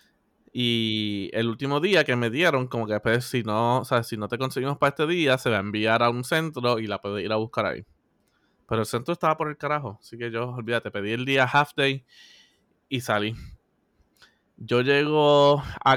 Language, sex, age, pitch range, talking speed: Spanish, male, 20-39, 120-165 Hz, 215 wpm